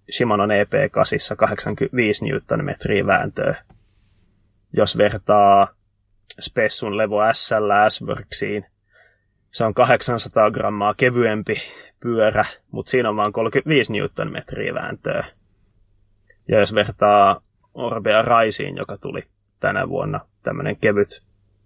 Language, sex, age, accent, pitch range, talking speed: Finnish, male, 20-39, native, 100-110 Hz, 95 wpm